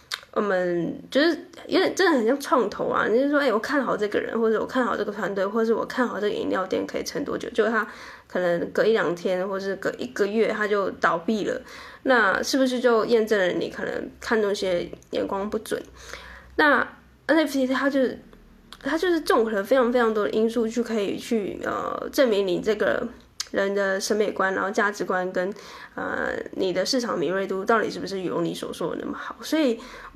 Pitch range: 195-255 Hz